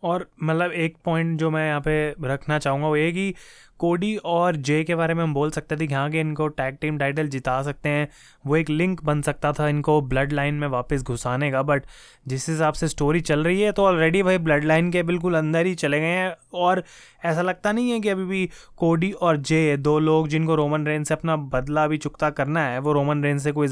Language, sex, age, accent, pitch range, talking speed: Hindi, male, 20-39, native, 150-180 Hz, 240 wpm